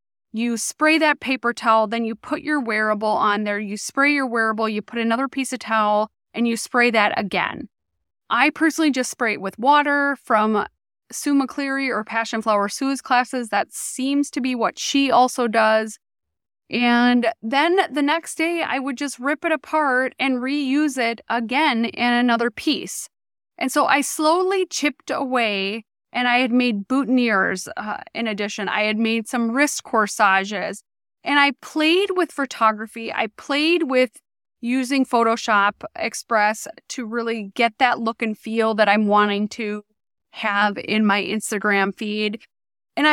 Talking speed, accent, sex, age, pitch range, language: 160 wpm, American, female, 20-39, 215-275 Hz, English